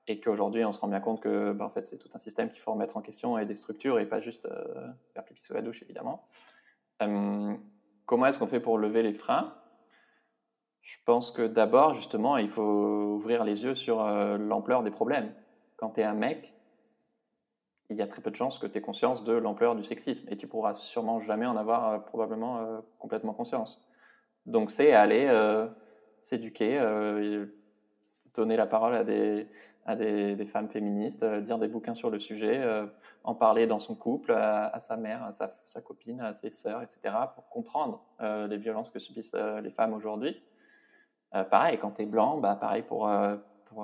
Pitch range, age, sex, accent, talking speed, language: 105-115 Hz, 20-39, male, French, 210 wpm, French